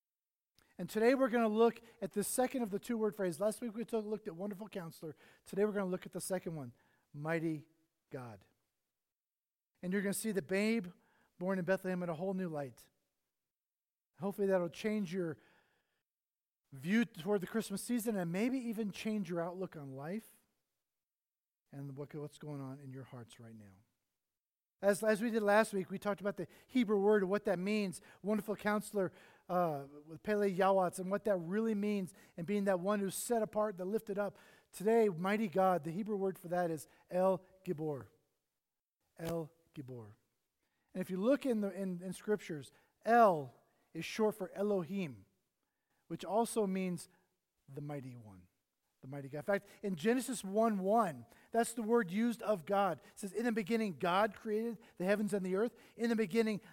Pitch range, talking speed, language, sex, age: 170-215 Hz, 185 wpm, English, male, 40-59